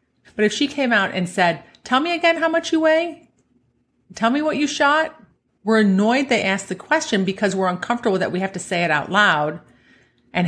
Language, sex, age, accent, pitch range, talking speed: English, female, 30-49, American, 170-225 Hz, 210 wpm